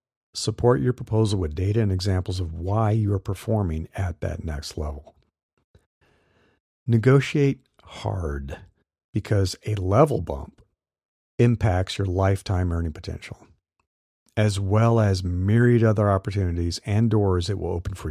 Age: 50-69